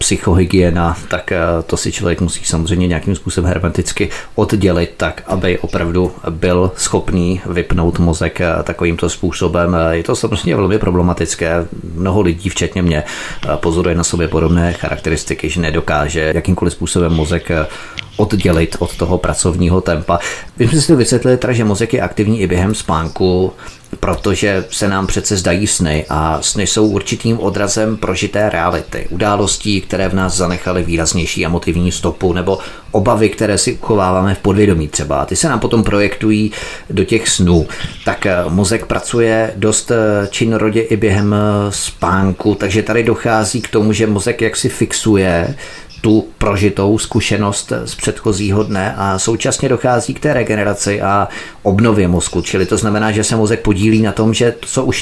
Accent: native